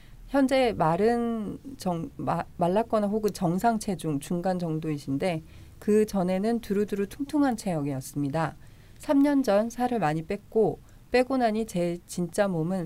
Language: Korean